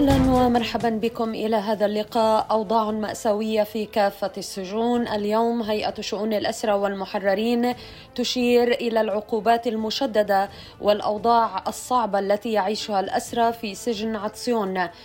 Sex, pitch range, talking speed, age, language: female, 210-235 Hz, 110 wpm, 20-39, Arabic